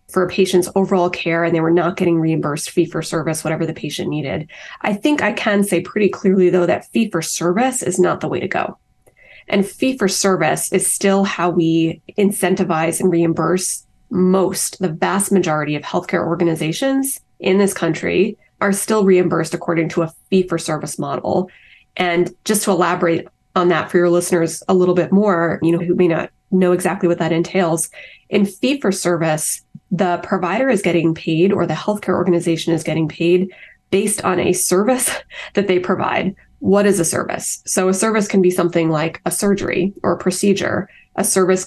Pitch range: 170-195 Hz